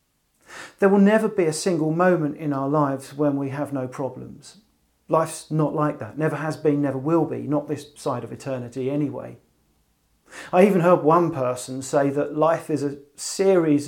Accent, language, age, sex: British, English, 40-59, male